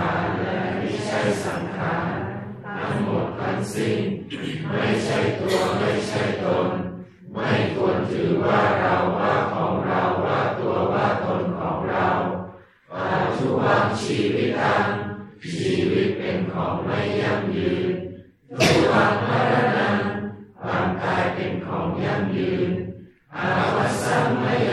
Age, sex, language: 50-69, female, Thai